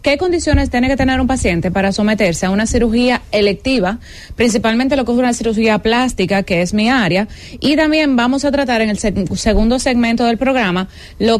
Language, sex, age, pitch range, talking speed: English, female, 20-39, 195-255 Hz, 190 wpm